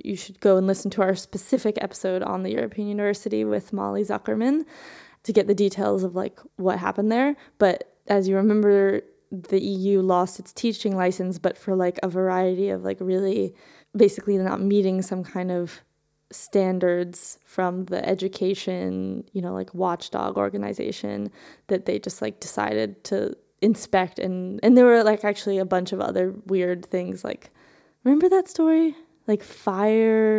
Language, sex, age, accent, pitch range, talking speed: English, female, 20-39, American, 185-215 Hz, 165 wpm